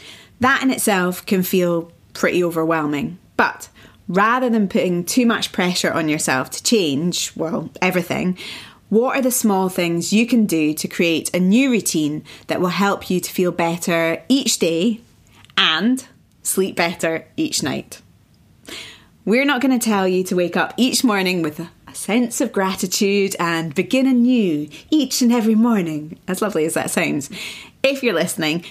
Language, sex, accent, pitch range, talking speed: English, female, British, 170-245 Hz, 165 wpm